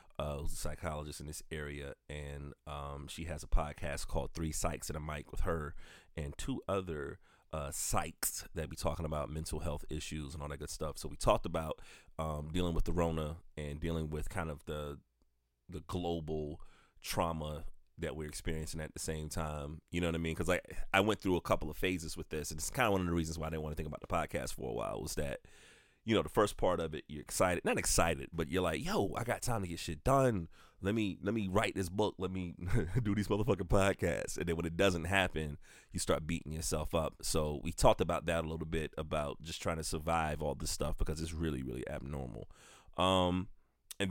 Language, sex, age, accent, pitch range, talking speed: English, male, 30-49, American, 75-90 Hz, 230 wpm